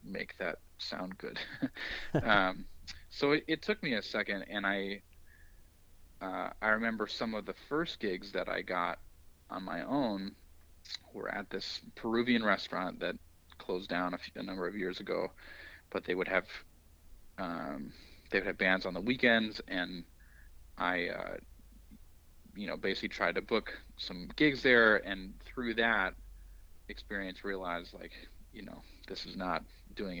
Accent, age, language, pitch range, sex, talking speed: American, 30-49, English, 80-105 Hz, male, 155 wpm